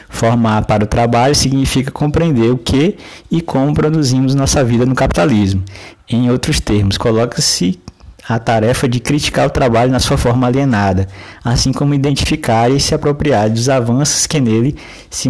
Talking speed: 155 wpm